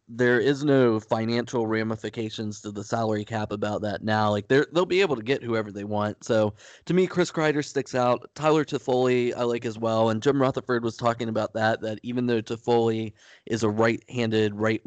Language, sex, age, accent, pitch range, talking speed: English, male, 20-39, American, 105-115 Hz, 200 wpm